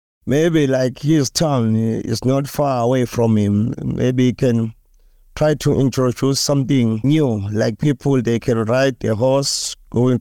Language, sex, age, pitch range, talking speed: English, male, 50-69, 115-145 Hz, 155 wpm